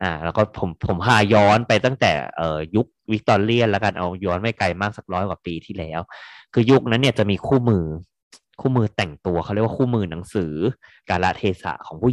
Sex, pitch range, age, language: male, 95-120 Hz, 20-39, Thai